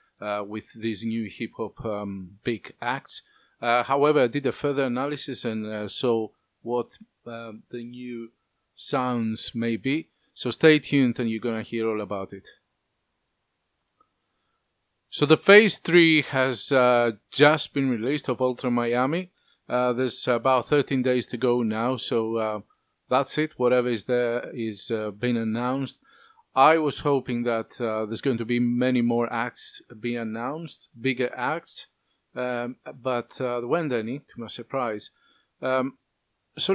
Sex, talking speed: male, 155 wpm